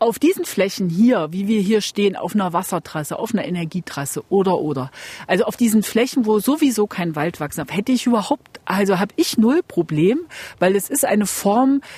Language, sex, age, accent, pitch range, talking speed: German, female, 40-59, German, 180-245 Hz, 195 wpm